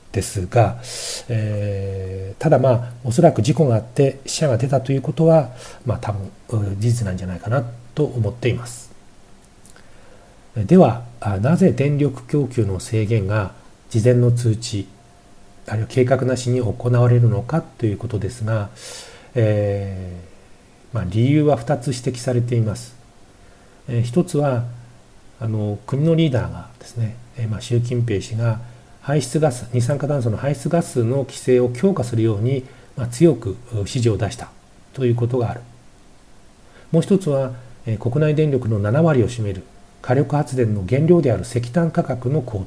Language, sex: Japanese, male